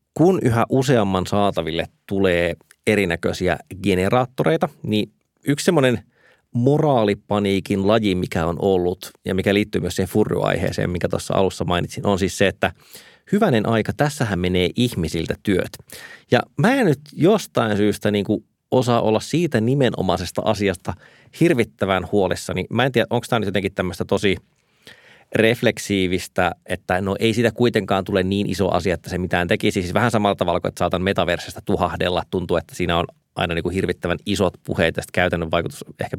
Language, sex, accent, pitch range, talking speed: Finnish, male, native, 90-125 Hz, 165 wpm